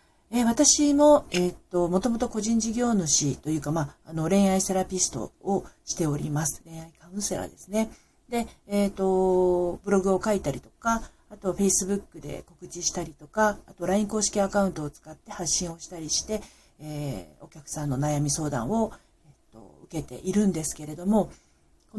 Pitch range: 160-215 Hz